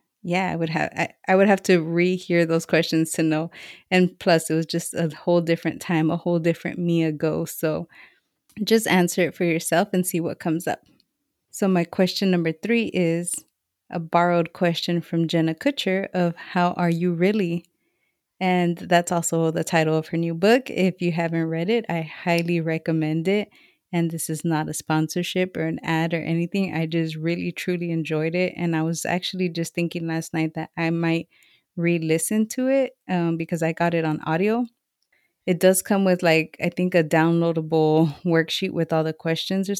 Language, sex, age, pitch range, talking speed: English, female, 20-39, 165-185 Hz, 190 wpm